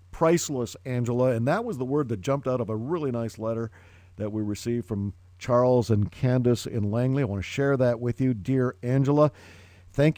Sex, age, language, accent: male, 50-69, English, American